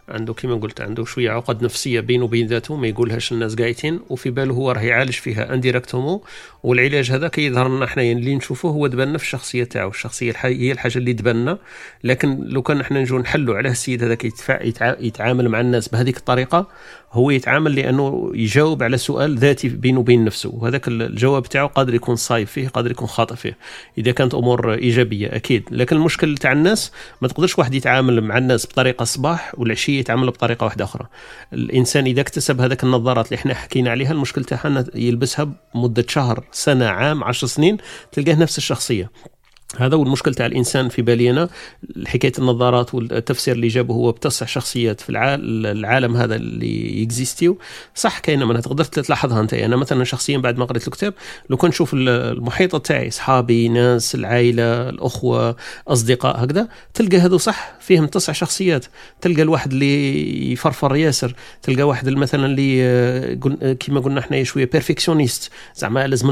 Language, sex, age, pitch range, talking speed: Arabic, male, 40-59, 120-145 Hz, 160 wpm